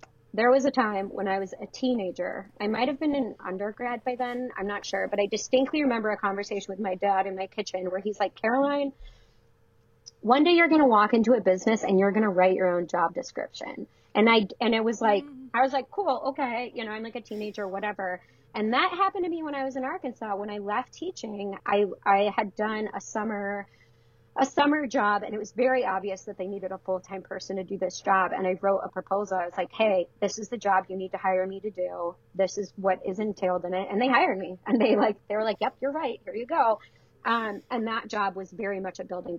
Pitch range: 190-245 Hz